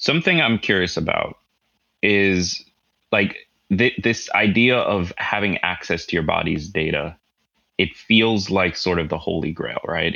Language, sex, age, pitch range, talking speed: English, male, 20-39, 85-105 Hz, 140 wpm